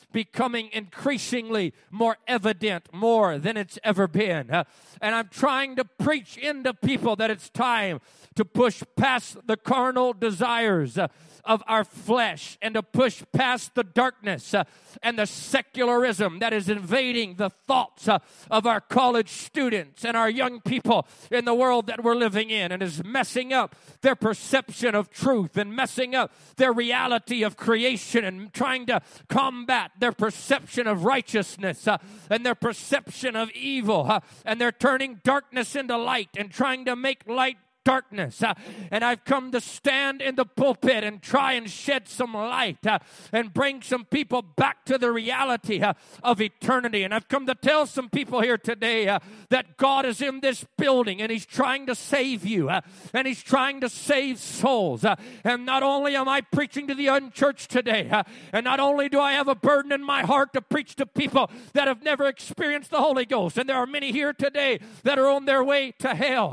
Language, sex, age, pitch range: English, male, 40-59, 215-265 Hz